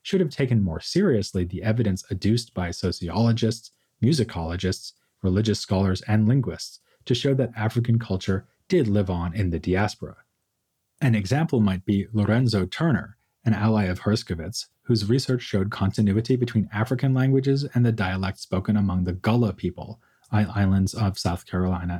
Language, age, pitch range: English, 30-49, 95-115 Hz